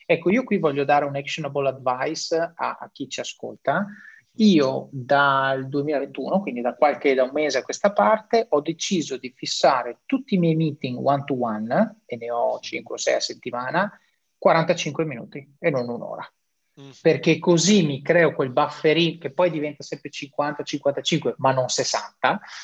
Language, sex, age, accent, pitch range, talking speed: Italian, male, 30-49, native, 135-175 Hz, 170 wpm